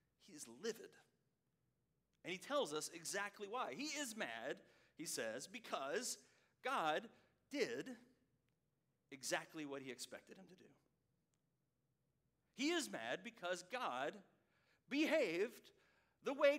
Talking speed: 115 wpm